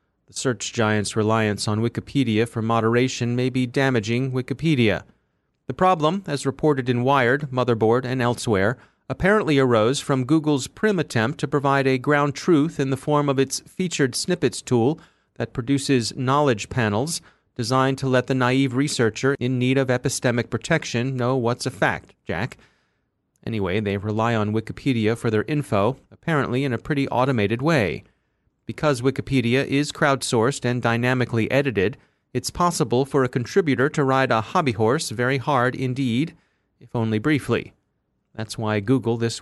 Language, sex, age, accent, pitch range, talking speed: English, male, 30-49, American, 115-140 Hz, 155 wpm